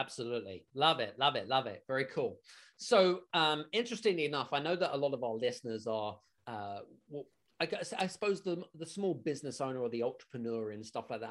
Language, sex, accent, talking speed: English, male, British, 210 wpm